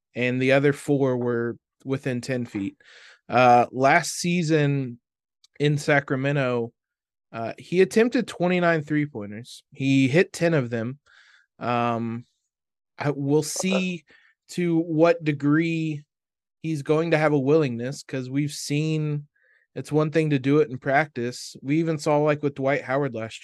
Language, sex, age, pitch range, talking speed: English, male, 20-39, 130-155 Hz, 140 wpm